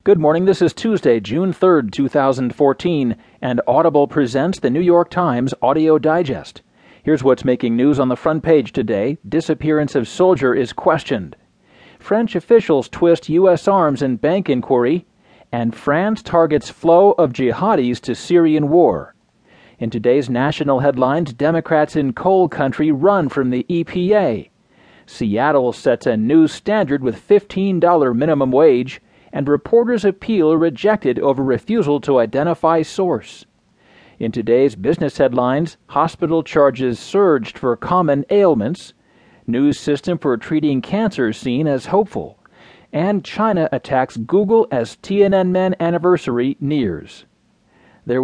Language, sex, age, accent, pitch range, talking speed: English, male, 40-59, American, 135-180 Hz, 130 wpm